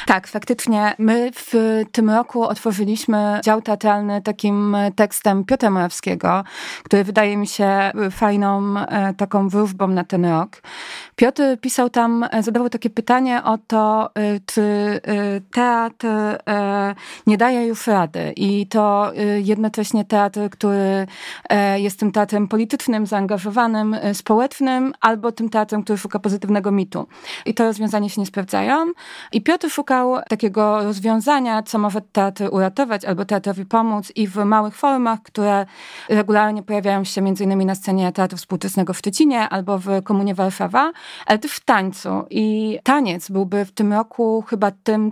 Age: 20-39